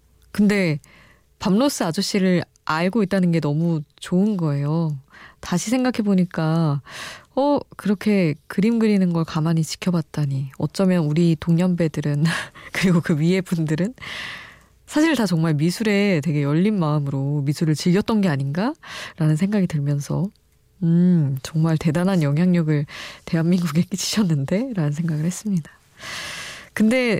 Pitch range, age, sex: 150-195 Hz, 20-39, female